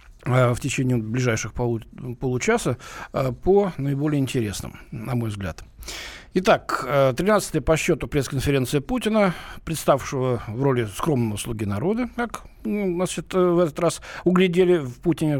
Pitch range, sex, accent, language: 125-175 Hz, male, native, Russian